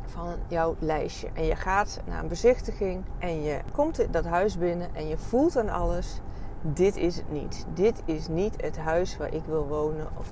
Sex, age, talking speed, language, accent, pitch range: female, 40-59, 205 wpm, Dutch, Dutch, 160-195 Hz